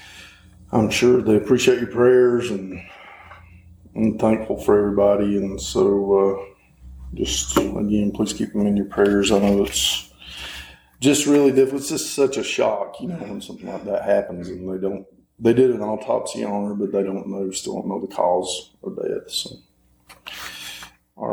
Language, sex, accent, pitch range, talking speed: English, male, American, 100-125 Hz, 175 wpm